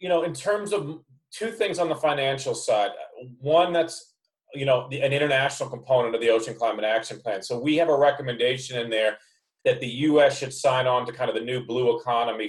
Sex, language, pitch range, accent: male, English, 115-160 Hz, American